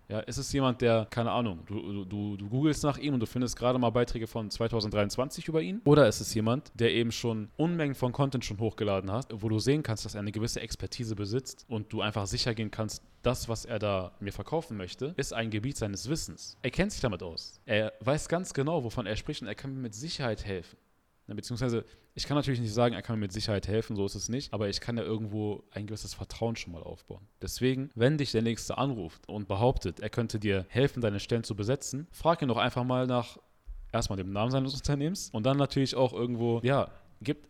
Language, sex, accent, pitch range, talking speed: German, male, German, 105-130 Hz, 230 wpm